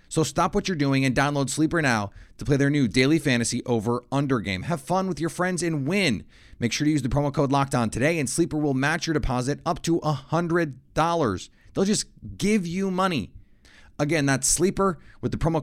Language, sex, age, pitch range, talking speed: English, male, 30-49, 120-160 Hz, 210 wpm